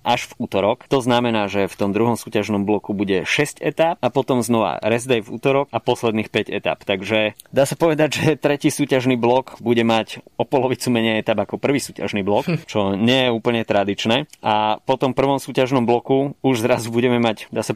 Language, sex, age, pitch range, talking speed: Slovak, male, 20-39, 105-125 Hz, 200 wpm